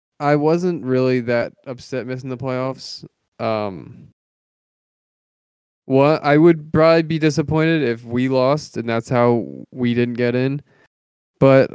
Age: 20-39